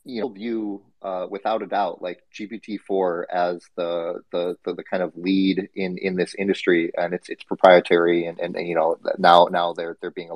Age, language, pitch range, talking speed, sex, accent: 30-49, English, 90-110 Hz, 210 wpm, male, American